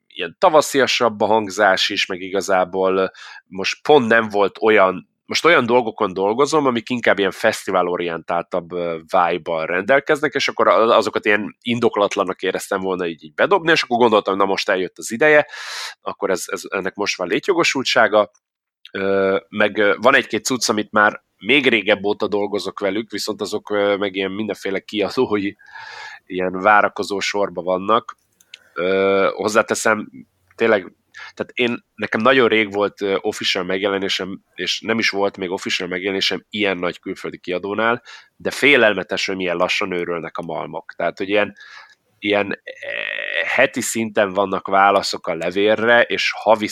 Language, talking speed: Hungarian, 140 wpm